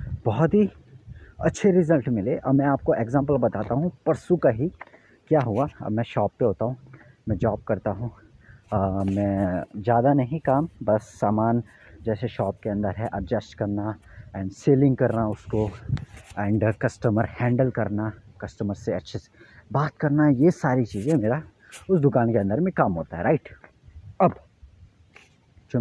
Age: 30-49